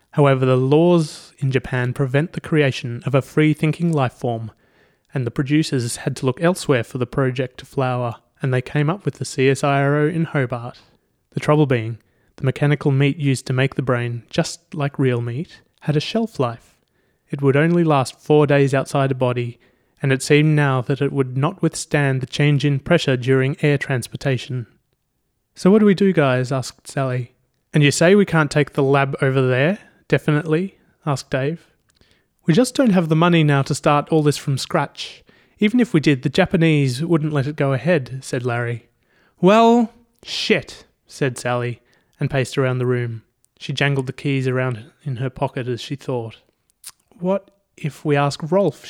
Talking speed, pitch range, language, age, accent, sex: 185 wpm, 130-155 Hz, English, 30-49, Australian, male